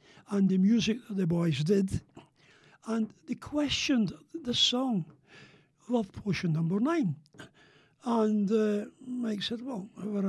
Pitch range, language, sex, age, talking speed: 195-250 Hz, English, male, 60-79, 130 wpm